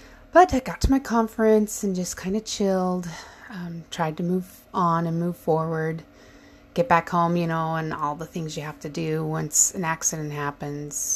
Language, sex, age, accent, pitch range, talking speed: English, female, 30-49, American, 155-205 Hz, 195 wpm